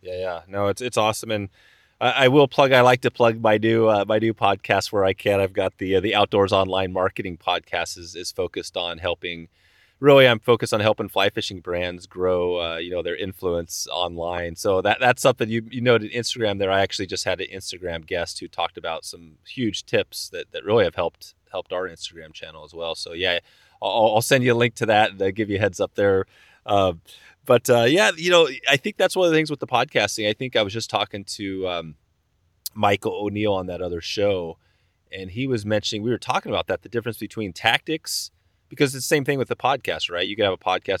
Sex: male